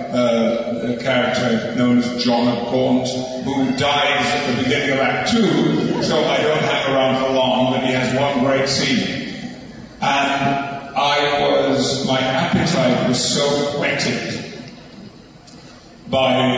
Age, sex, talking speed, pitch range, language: 50-69, male, 135 wpm, 125-140 Hz, English